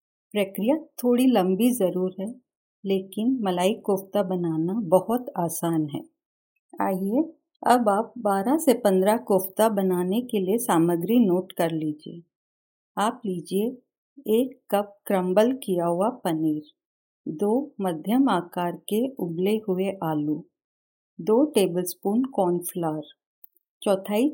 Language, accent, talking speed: Hindi, native, 115 wpm